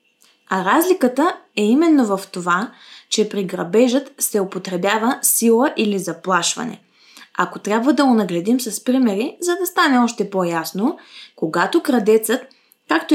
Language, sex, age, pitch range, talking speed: Bulgarian, female, 20-39, 185-260 Hz, 130 wpm